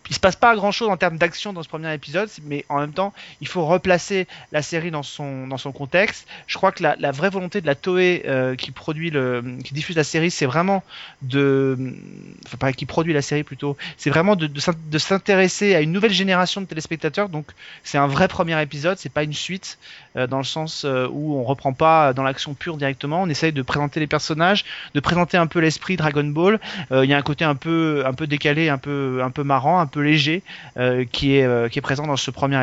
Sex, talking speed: male, 245 wpm